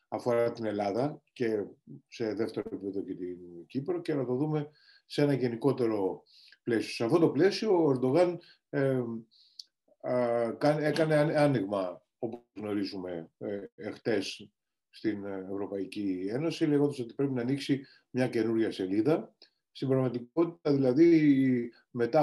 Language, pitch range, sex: Greek, 110-140 Hz, male